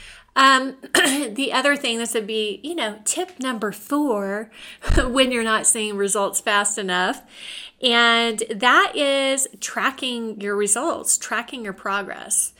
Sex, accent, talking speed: female, American, 135 wpm